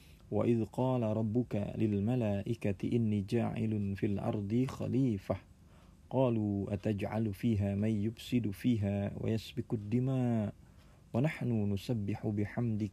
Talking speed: 90 wpm